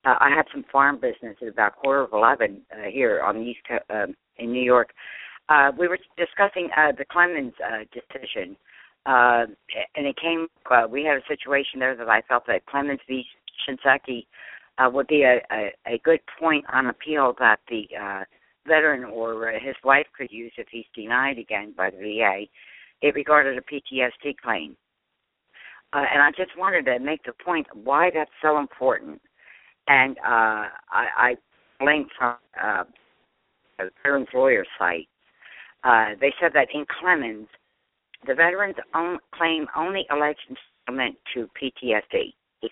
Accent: American